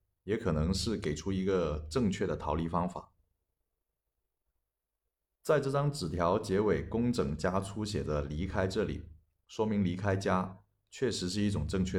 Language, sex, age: Chinese, male, 30-49